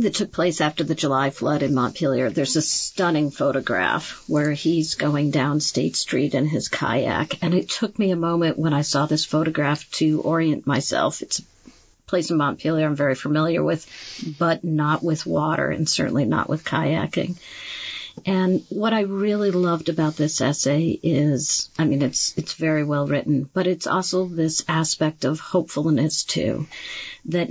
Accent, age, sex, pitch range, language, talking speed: American, 50-69, female, 145-175 Hz, English, 170 wpm